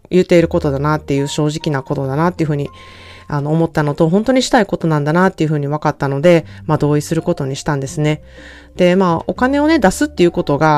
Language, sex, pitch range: Japanese, female, 140-190 Hz